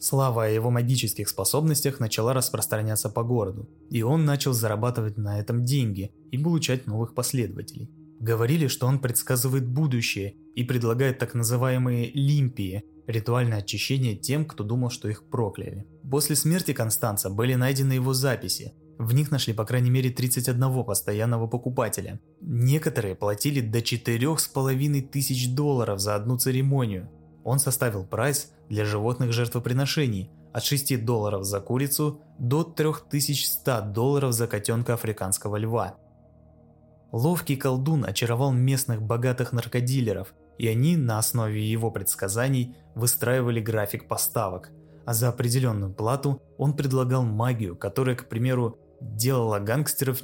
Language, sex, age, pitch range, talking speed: Russian, male, 20-39, 110-135 Hz, 130 wpm